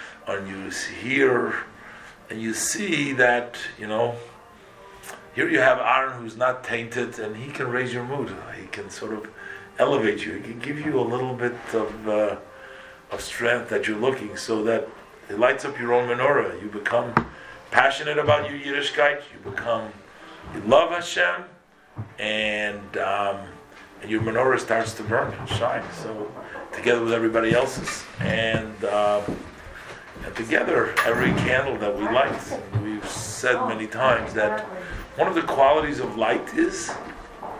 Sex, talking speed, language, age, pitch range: male, 155 wpm, English, 50-69, 110-145 Hz